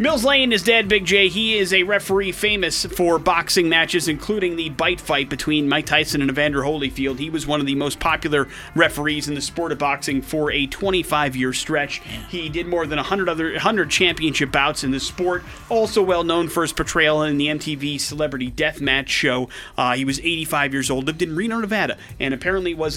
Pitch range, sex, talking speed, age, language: 135-175 Hz, male, 200 wpm, 30-49, English